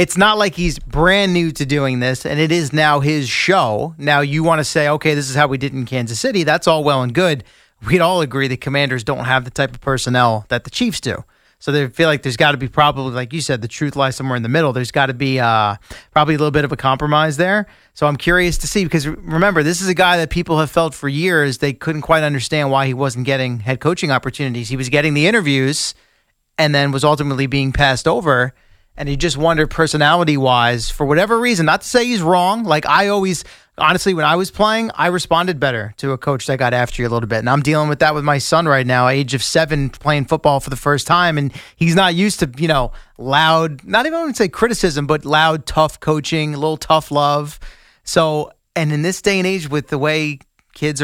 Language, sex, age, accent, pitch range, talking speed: English, male, 30-49, American, 135-165 Hz, 245 wpm